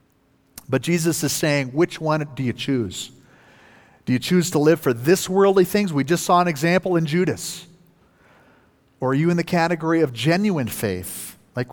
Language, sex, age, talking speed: English, male, 40-59, 180 wpm